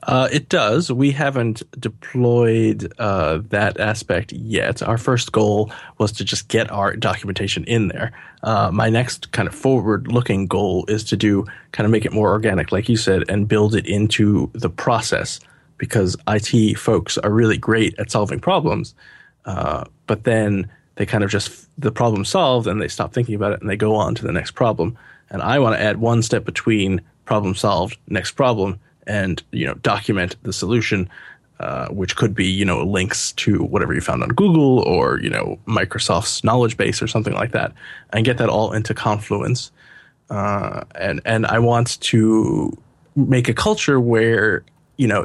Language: English